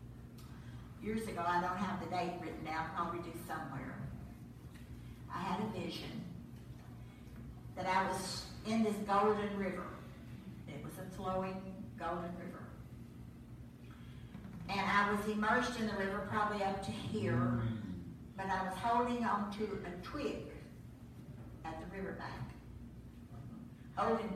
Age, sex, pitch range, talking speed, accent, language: 50-69, female, 160-205 Hz, 130 wpm, American, English